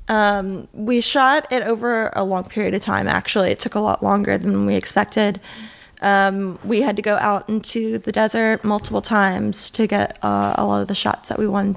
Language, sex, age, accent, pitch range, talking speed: English, female, 20-39, American, 195-225 Hz, 210 wpm